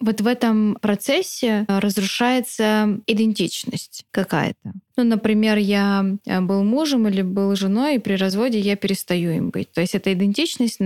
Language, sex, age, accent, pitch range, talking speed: Russian, female, 20-39, native, 185-220 Hz, 145 wpm